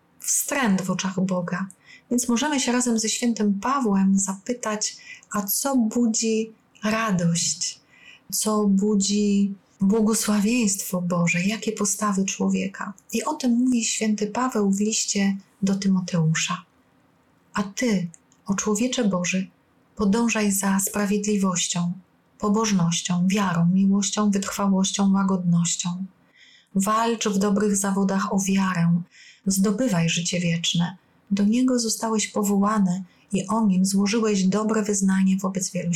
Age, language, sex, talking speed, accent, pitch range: 30-49, Polish, female, 110 wpm, native, 190-215 Hz